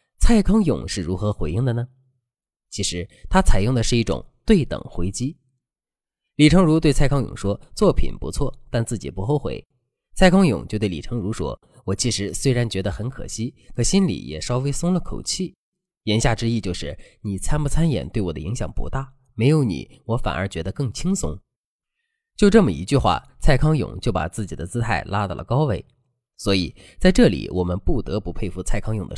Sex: male